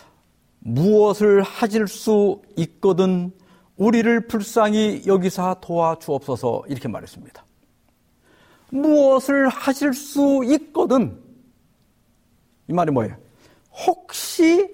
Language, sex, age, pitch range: Korean, male, 50-69, 170-250 Hz